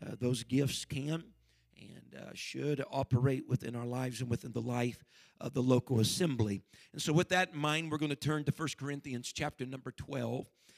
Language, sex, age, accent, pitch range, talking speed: English, male, 50-69, American, 120-140 Hz, 195 wpm